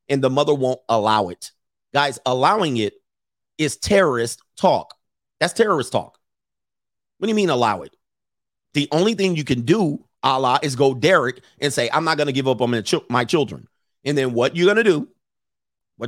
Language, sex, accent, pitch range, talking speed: English, male, American, 120-150 Hz, 185 wpm